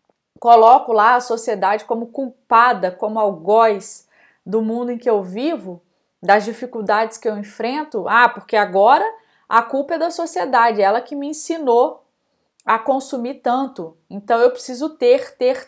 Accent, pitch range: Brazilian, 215-285 Hz